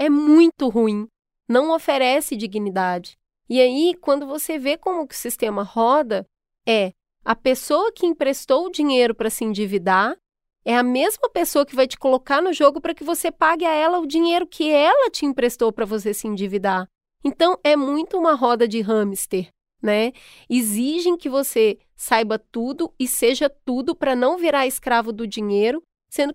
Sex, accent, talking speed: female, Brazilian, 170 wpm